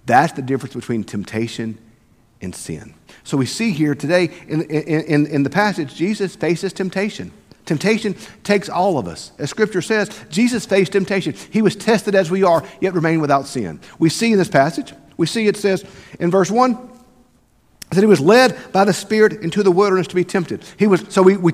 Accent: American